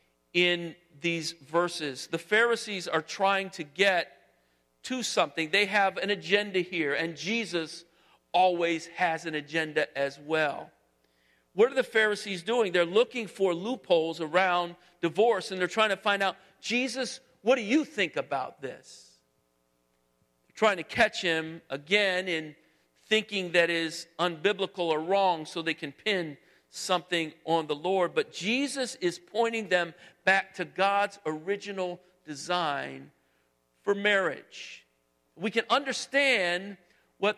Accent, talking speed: American, 135 wpm